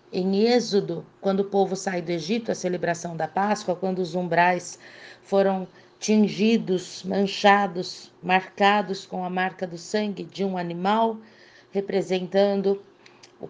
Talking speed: 130 wpm